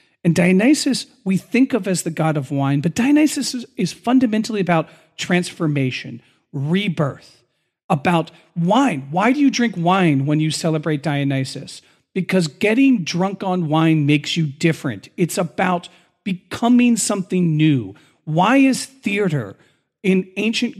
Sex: male